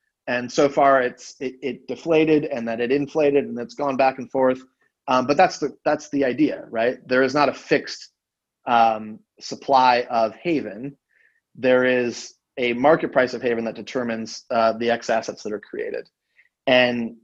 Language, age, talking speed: English, 30-49, 180 wpm